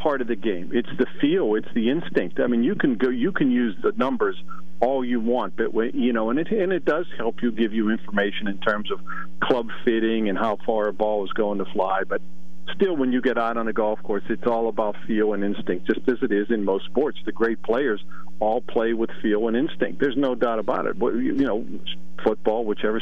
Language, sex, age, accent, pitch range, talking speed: English, male, 50-69, American, 100-125 Hz, 240 wpm